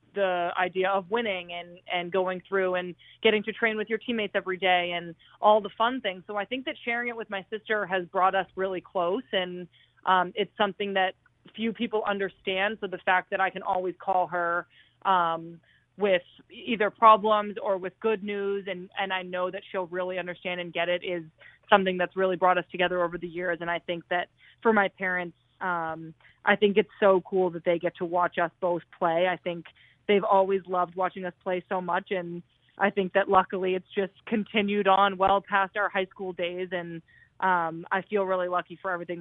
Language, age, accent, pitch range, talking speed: English, 20-39, American, 175-200 Hz, 210 wpm